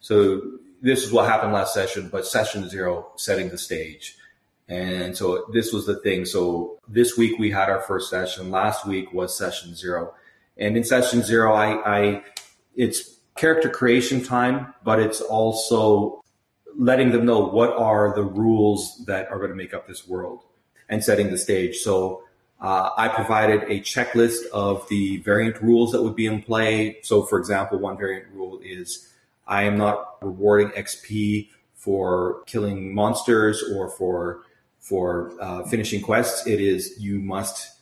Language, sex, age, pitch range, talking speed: English, male, 30-49, 95-110 Hz, 165 wpm